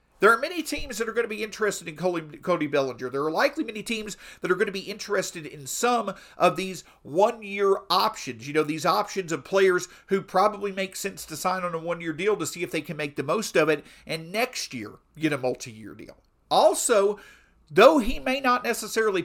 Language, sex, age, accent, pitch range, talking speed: English, male, 50-69, American, 165-220 Hz, 215 wpm